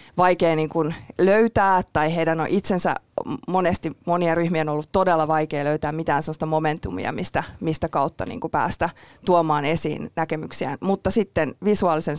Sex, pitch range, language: female, 155-185 Hz, Finnish